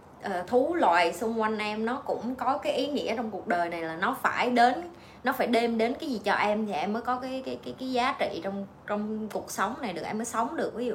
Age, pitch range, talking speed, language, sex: 20-39, 195-250 Hz, 270 wpm, Vietnamese, female